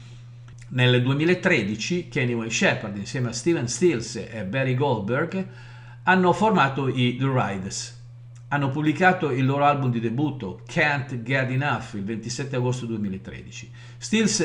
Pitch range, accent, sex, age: 120-145 Hz, native, male, 50-69